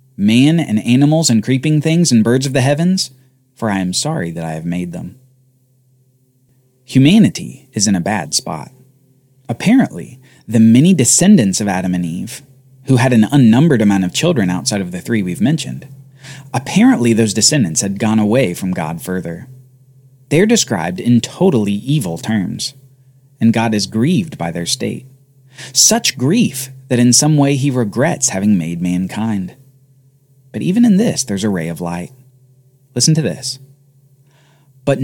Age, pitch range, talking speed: 30-49, 115-140 Hz, 160 wpm